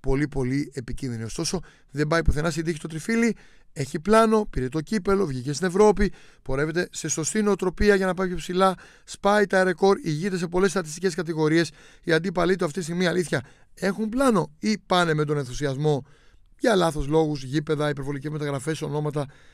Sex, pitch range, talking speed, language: male, 145-185 Hz, 170 wpm, Greek